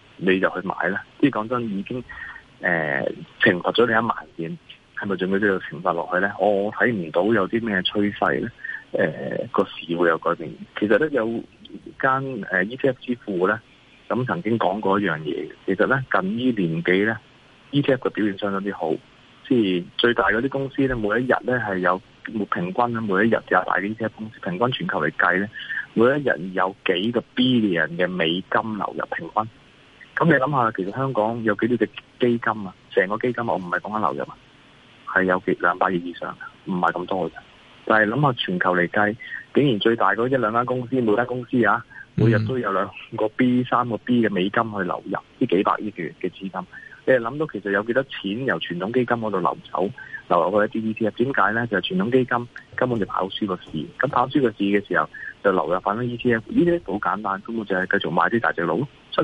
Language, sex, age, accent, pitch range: Chinese, male, 30-49, native, 100-125 Hz